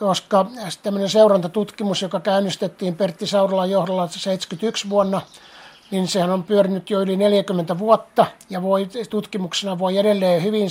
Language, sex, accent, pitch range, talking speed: Finnish, male, native, 185-205 Hz, 135 wpm